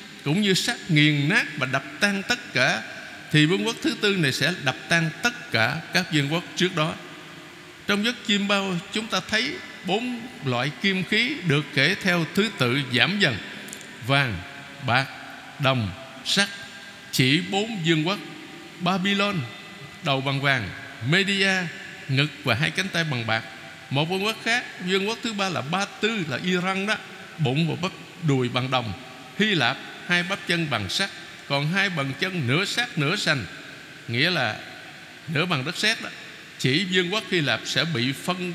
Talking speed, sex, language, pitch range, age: 175 wpm, male, Vietnamese, 145-195 Hz, 60-79